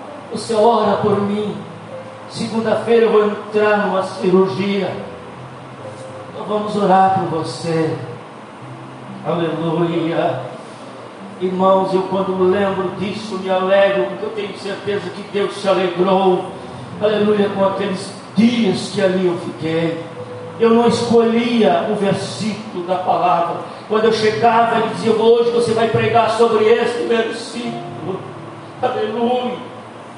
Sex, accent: male, Brazilian